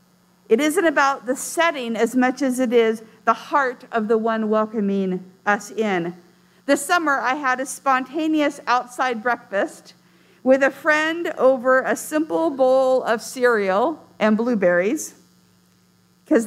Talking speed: 140 wpm